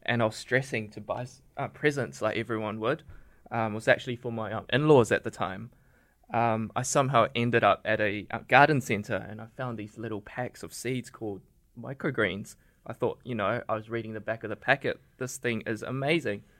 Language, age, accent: English, 20-39, Australian